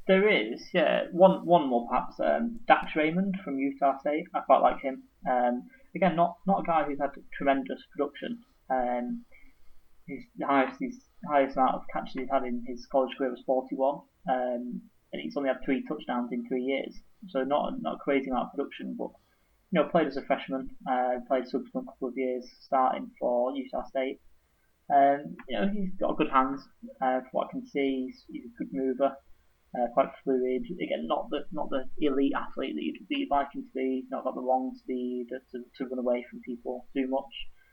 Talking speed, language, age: 205 wpm, English, 20-39